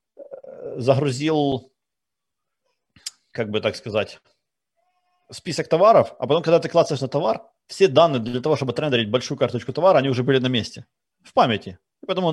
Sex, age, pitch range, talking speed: male, 30-49, 110-150 Hz, 155 wpm